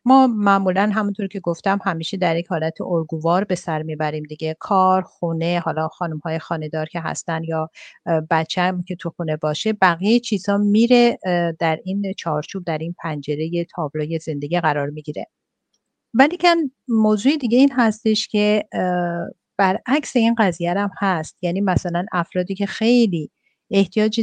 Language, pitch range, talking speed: Persian, 165-210 Hz, 145 wpm